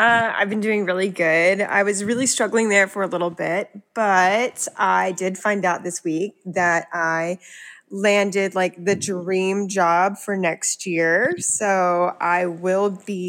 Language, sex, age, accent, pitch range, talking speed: English, female, 20-39, American, 180-215 Hz, 165 wpm